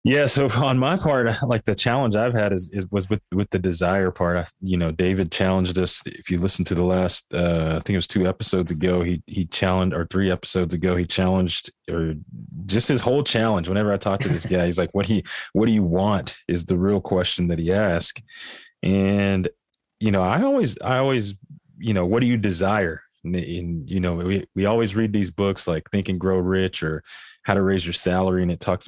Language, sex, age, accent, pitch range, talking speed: English, male, 20-39, American, 90-105 Hz, 225 wpm